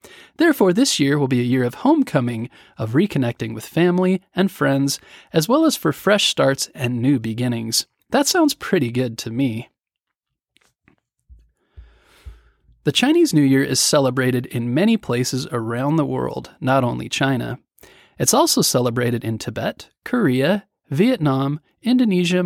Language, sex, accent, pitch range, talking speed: English, male, American, 125-195 Hz, 140 wpm